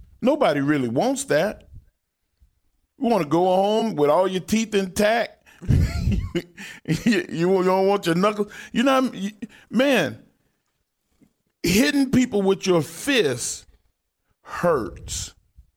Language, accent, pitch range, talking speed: English, American, 130-200 Hz, 125 wpm